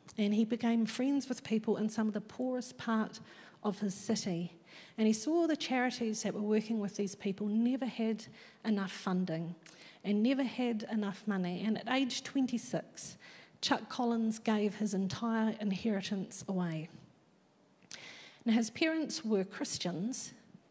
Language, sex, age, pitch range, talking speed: English, female, 40-59, 200-250 Hz, 150 wpm